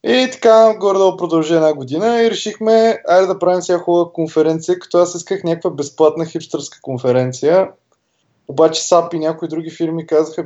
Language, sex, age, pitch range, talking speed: Bulgarian, male, 20-39, 135-185 Hz, 170 wpm